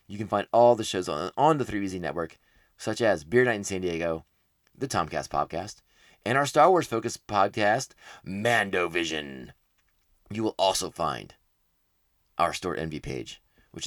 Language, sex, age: English, male, 30-49